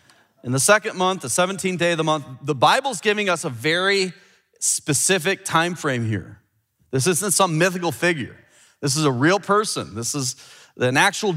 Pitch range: 145-185 Hz